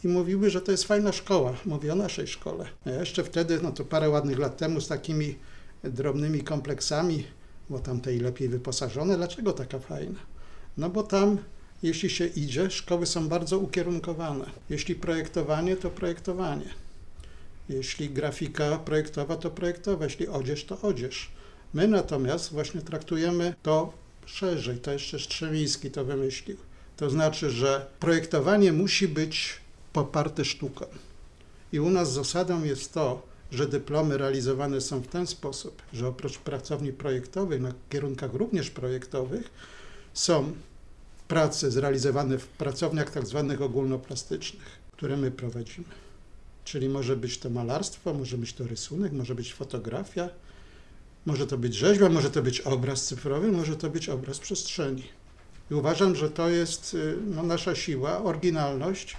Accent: native